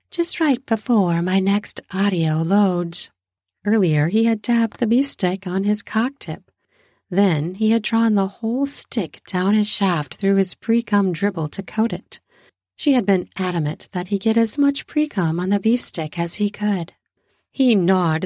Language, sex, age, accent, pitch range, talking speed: English, female, 40-59, American, 175-215 Hz, 180 wpm